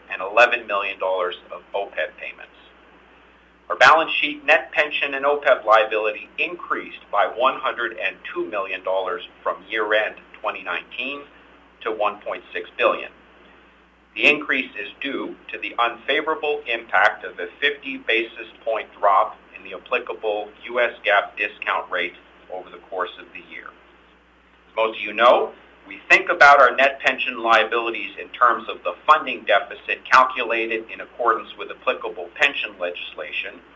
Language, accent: English, American